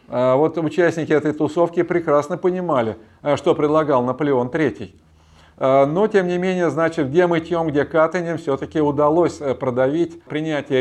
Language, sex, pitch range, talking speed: Russian, male, 125-150 Hz, 130 wpm